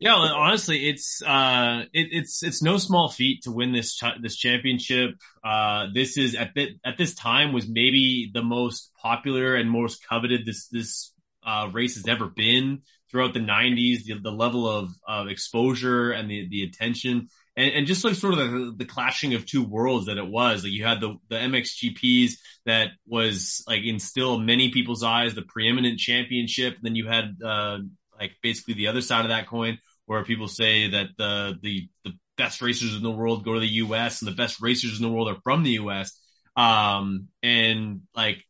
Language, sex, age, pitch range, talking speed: English, male, 20-39, 105-125 Hz, 200 wpm